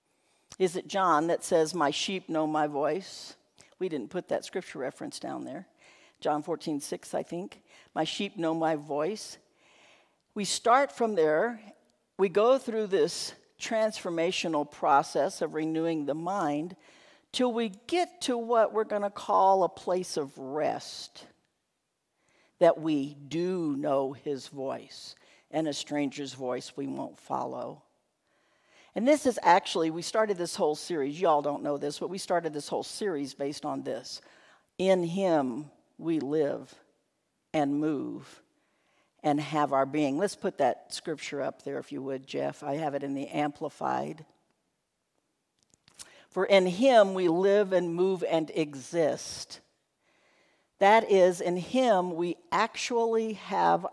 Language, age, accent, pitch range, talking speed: English, 60-79, American, 150-205 Hz, 145 wpm